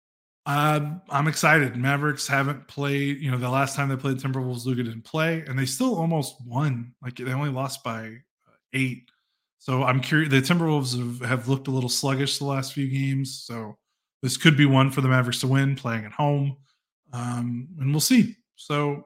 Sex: male